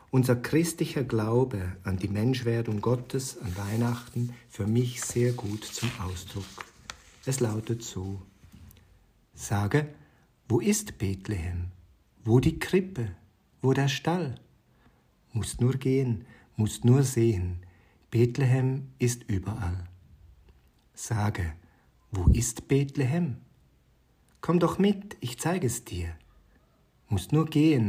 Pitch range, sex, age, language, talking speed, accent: 100-130 Hz, male, 50-69, German, 110 wpm, German